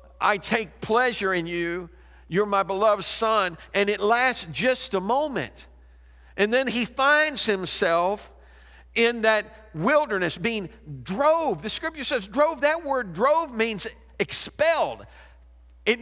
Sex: male